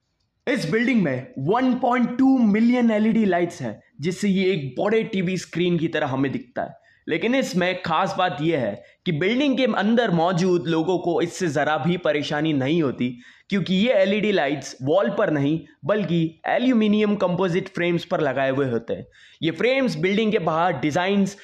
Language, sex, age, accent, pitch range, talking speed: Hindi, male, 20-39, native, 160-210 Hz, 110 wpm